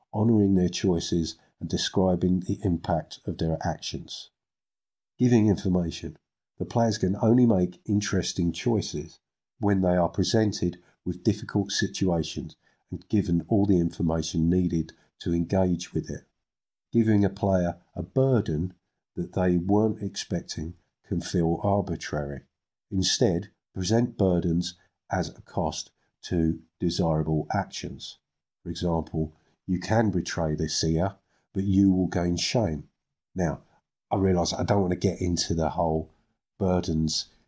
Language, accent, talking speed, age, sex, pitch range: English, British, 130 wpm, 50-69, male, 85-100 Hz